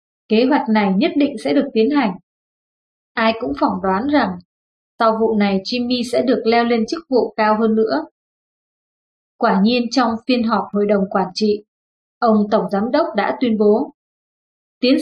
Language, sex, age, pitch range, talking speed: Vietnamese, female, 20-39, 220-275 Hz, 175 wpm